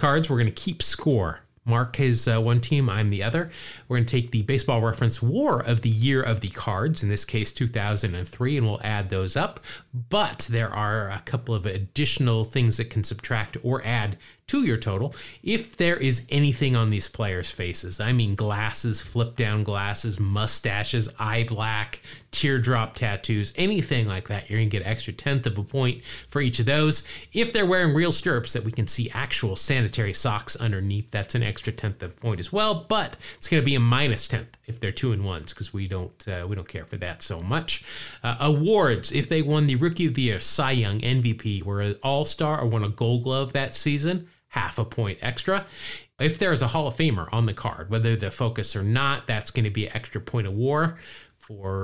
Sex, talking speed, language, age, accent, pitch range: male, 215 wpm, English, 30-49, American, 105-140 Hz